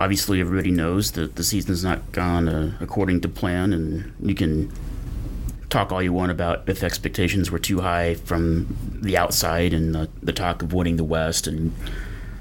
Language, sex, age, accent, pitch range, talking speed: English, male, 30-49, American, 85-100 Hz, 180 wpm